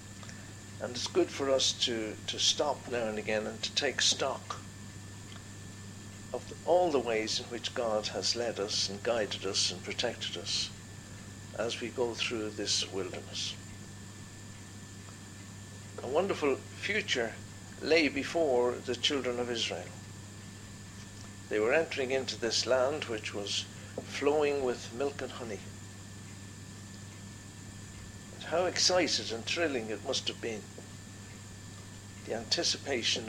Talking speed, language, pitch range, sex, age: 125 wpm, English, 100-120 Hz, male, 60-79